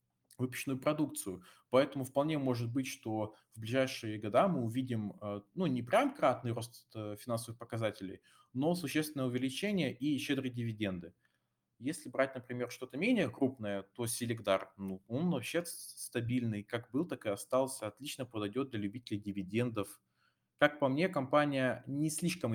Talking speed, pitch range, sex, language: 140 wpm, 110-135 Hz, male, Russian